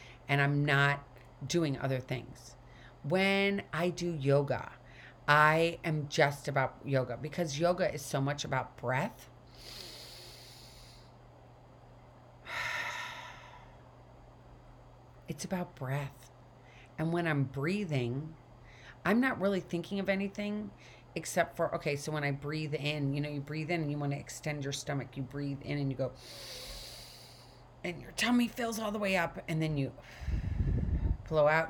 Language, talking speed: English, 140 wpm